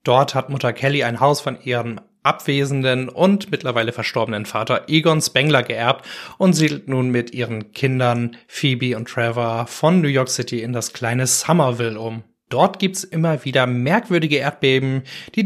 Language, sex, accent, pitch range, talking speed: German, male, German, 120-150 Hz, 160 wpm